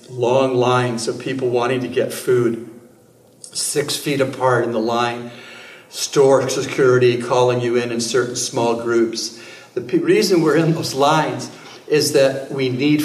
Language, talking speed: English, 150 wpm